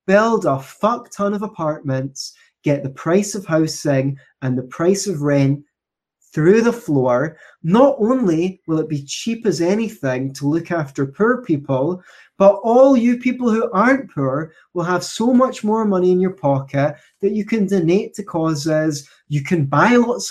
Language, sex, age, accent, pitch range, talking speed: English, male, 20-39, British, 140-200 Hz, 170 wpm